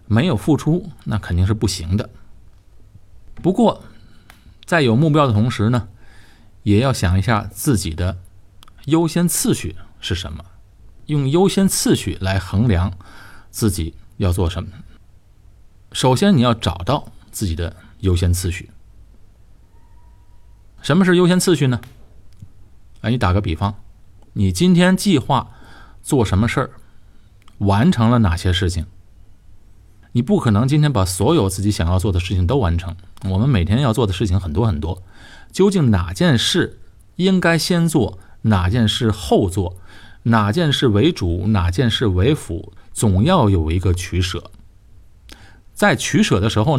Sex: male